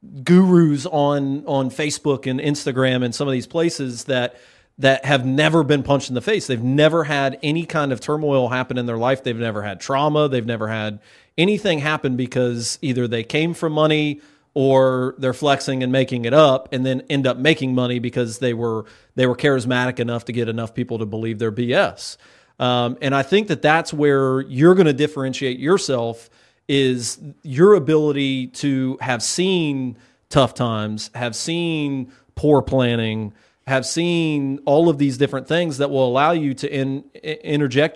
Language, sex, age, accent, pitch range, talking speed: English, male, 40-59, American, 125-150 Hz, 175 wpm